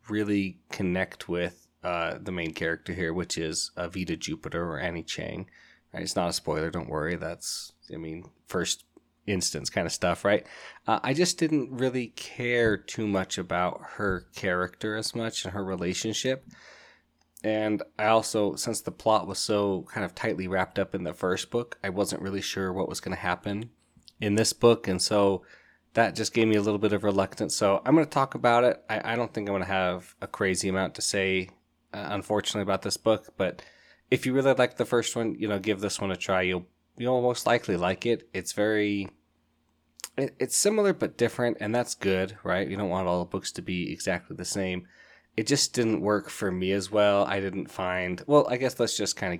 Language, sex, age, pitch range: English, male, 20-39, 90-110 Hz